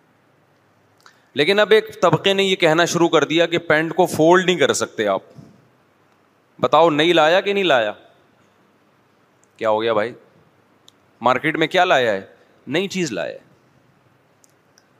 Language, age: Urdu, 30-49